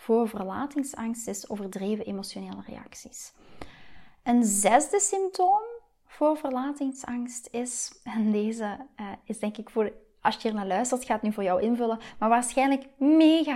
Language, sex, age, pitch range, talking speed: Dutch, female, 20-39, 215-270 Hz, 135 wpm